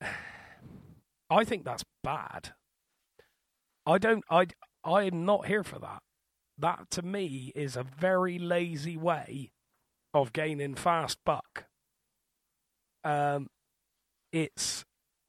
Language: English